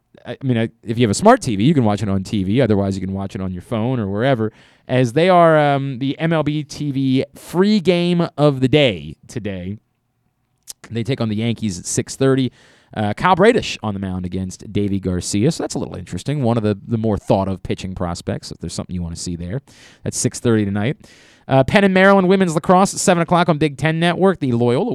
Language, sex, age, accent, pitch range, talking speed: English, male, 30-49, American, 105-150 Hz, 220 wpm